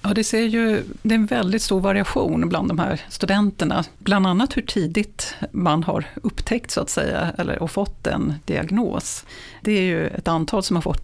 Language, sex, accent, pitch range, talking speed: Swedish, female, native, 170-215 Hz, 180 wpm